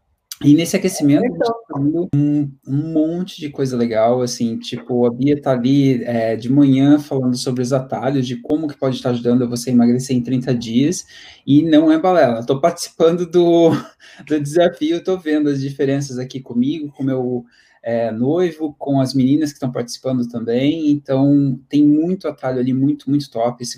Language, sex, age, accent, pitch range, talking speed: Portuguese, male, 20-39, Brazilian, 125-160 Hz, 180 wpm